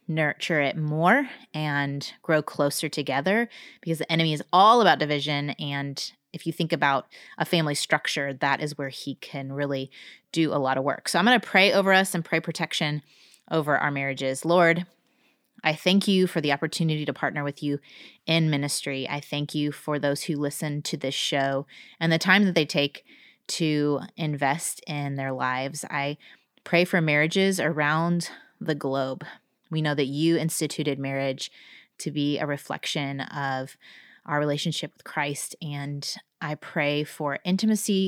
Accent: American